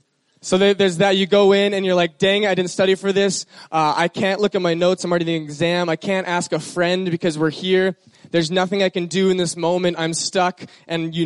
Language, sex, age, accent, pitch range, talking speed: English, male, 20-39, American, 165-195 Hz, 250 wpm